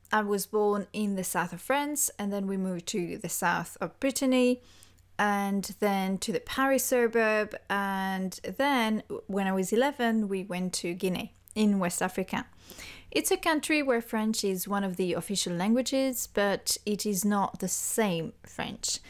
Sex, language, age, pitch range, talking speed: female, English, 20-39, 190-235 Hz, 170 wpm